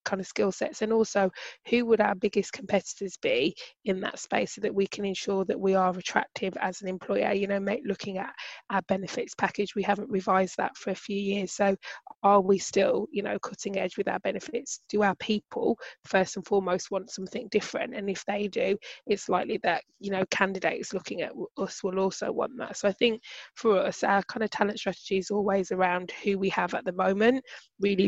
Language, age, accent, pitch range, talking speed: English, 20-39, British, 190-210 Hz, 215 wpm